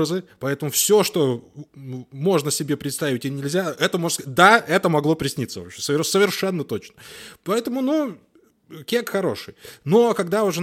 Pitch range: 125-190 Hz